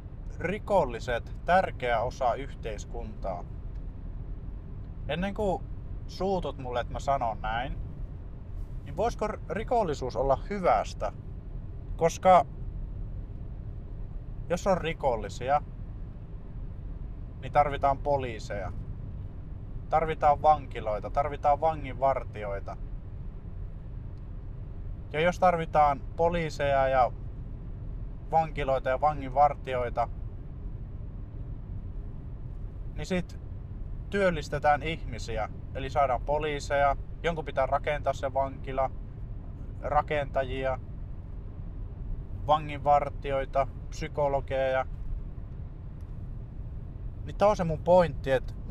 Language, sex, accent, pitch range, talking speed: Finnish, male, native, 100-145 Hz, 70 wpm